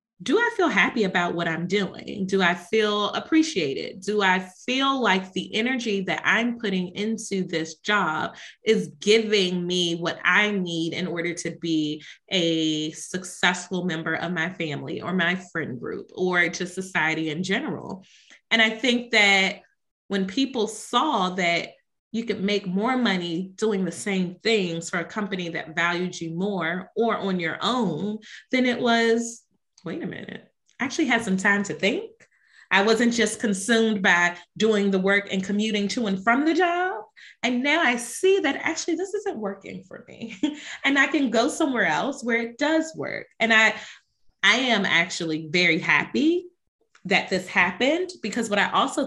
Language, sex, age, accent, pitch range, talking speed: English, female, 30-49, American, 180-235 Hz, 170 wpm